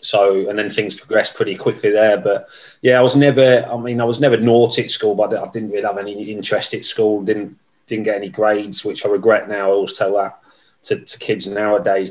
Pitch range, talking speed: 95-115 Hz, 235 wpm